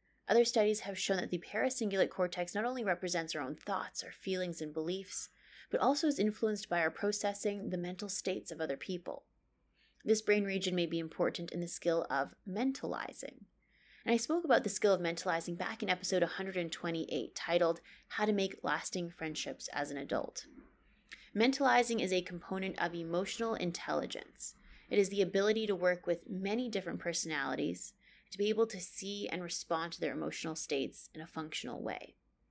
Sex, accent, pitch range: female, American, 165-205 Hz